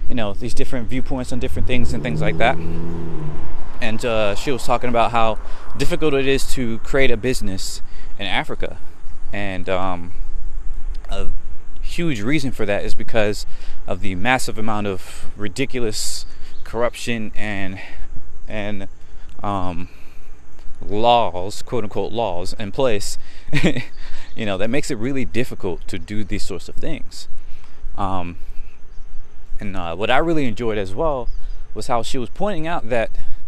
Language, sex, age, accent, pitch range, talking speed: English, male, 20-39, American, 85-120 Hz, 140 wpm